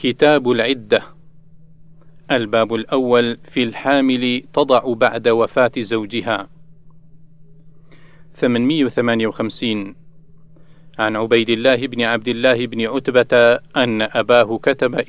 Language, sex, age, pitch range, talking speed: Arabic, male, 40-59, 115-135 Hz, 90 wpm